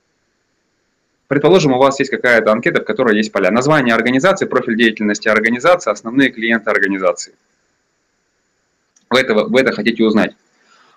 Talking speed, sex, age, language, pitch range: 125 wpm, male, 20-39, Russian, 110-185 Hz